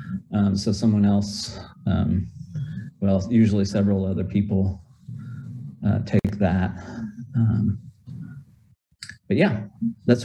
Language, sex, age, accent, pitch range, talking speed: English, male, 40-59, American, 105-125 Hz, 100 wpm